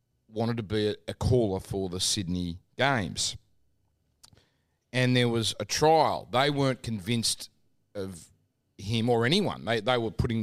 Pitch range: 100-125 Hz